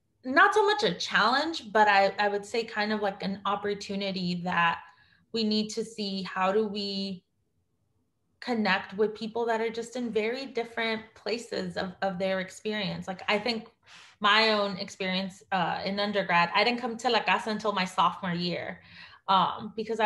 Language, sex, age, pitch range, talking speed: English, female, 20-39, 195-225 Hz, 175 wpm